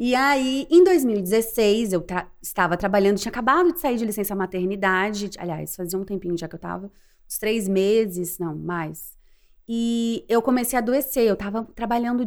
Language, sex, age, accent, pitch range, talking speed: Portuguese, female, 20-39, Brazilian, 200-290 Hz, 170 wpm